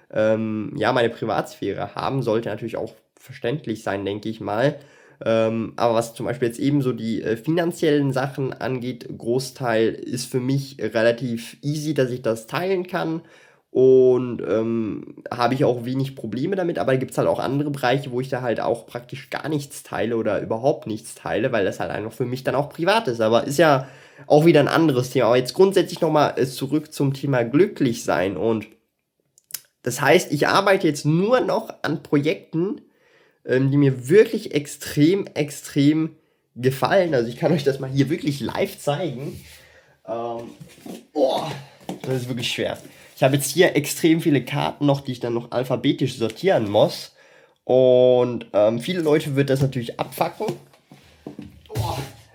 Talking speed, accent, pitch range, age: 170 wpm, German, 120-150 Hz, 20-39